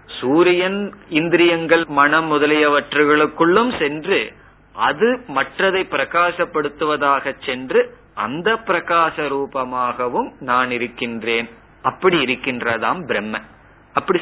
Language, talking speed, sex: Tamil, 75 wpm, male